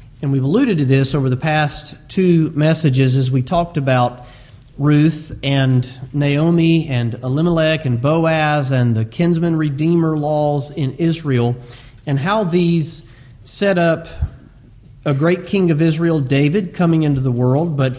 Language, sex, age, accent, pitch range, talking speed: English, male, 40-59, American, 130-165 Hz, 145 wpm